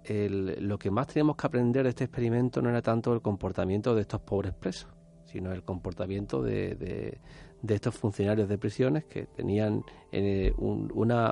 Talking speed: 160 wpm